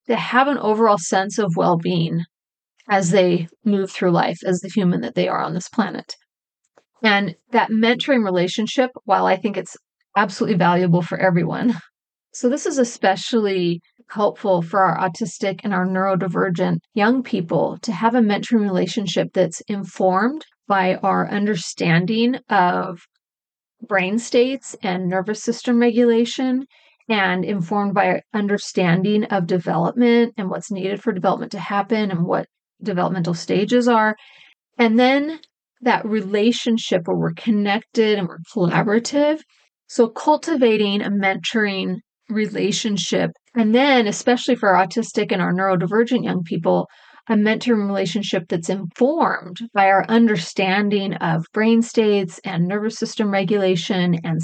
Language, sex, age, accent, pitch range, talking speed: English, female, 30-49, American, 190-230 Hz, 140 wpm